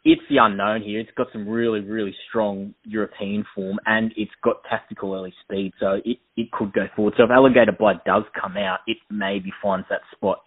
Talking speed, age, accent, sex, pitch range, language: 205 wpm, 20-39, Australian, male, 95-115 Hz, English